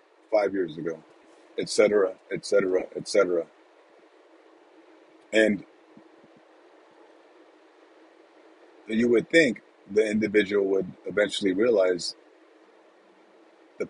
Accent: American